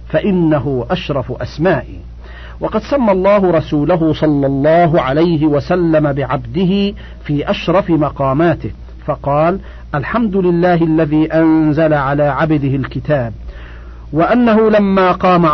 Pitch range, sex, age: 145-180 Hz, male, 50-69